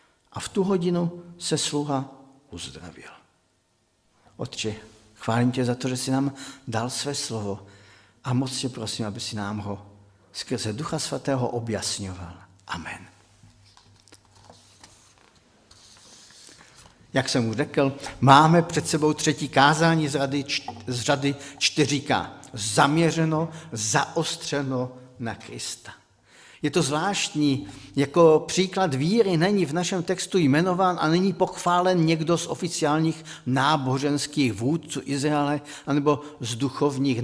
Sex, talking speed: male, 115 wpm